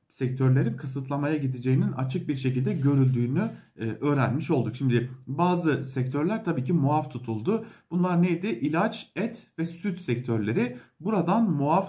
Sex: male